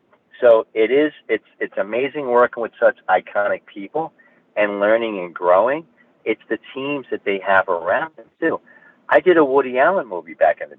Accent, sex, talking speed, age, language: American, male, 185 wpm, 50-69, English